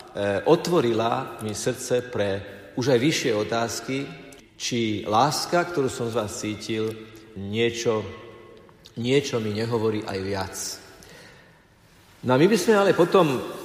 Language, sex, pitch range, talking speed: Slovak, male, 110-155 Hz, 125 wpm